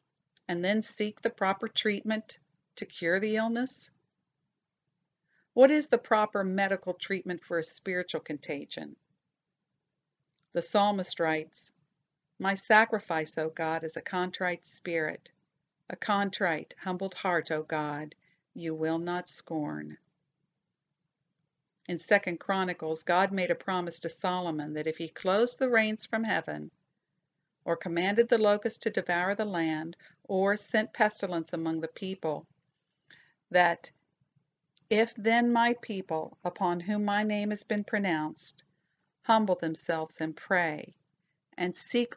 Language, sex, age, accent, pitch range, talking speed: English, female, 50-69, American, 160-205 Hz, 130 wpm